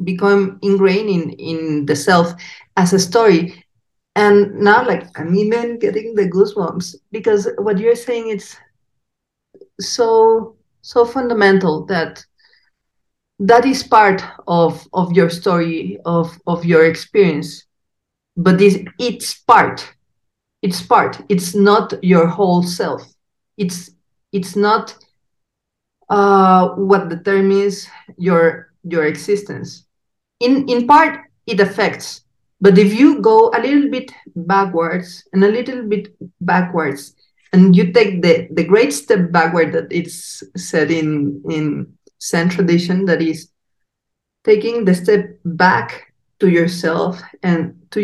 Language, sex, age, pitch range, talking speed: English, female, 40-59, 170-205 Hz, 125 wpm